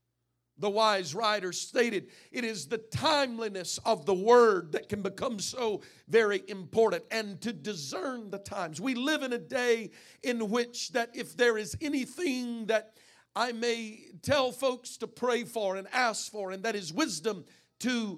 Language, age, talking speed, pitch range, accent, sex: English, 50-69, 165 wpm, 180-245 Hz, American, male